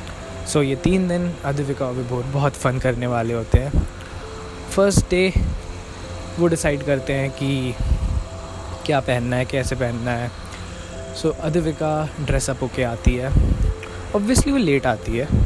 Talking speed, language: 145 wpm, Hindi